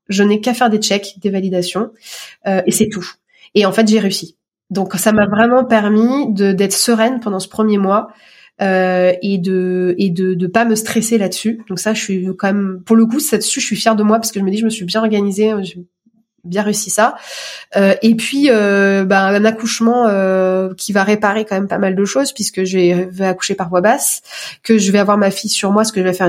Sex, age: female, 20-39